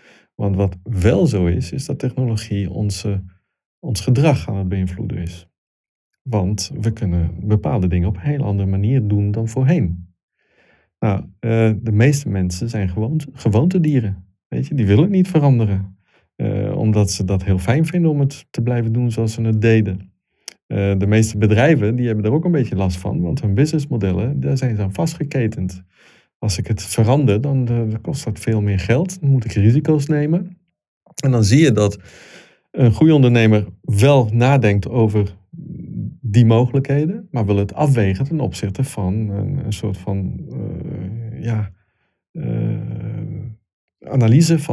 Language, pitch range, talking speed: Dutch, 100-135 Hz, 160 wpm